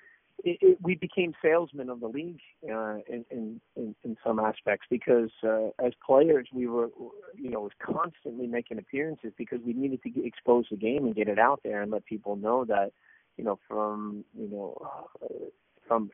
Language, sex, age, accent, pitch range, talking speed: English, male, 40-59, American, 110-140 Hz, 190 wpm